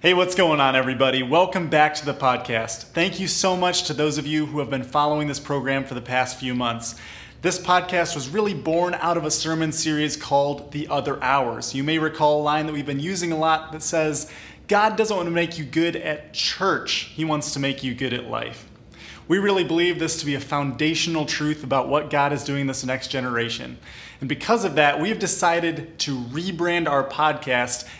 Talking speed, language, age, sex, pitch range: 215 wpm, English, 20-39, male, 135-170 Hz